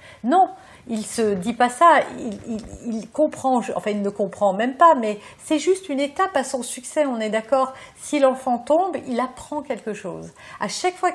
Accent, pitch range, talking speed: French, 205-290 Hz, 205 wpm